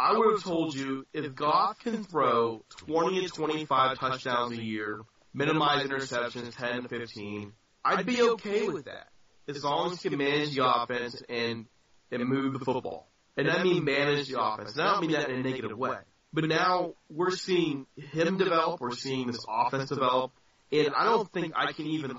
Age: 30-49